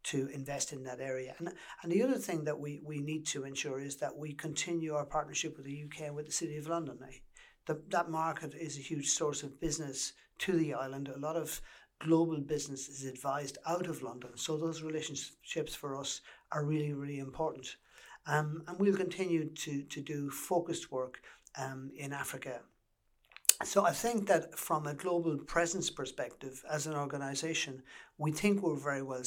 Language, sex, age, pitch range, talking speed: English, male, 50-69, 135-160 Hz, 190 wpm